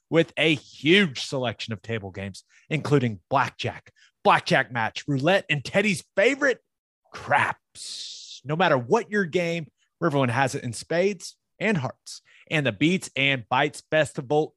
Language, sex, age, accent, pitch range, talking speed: English, male, 30-49, American, 125-175 Hz, 140 wpm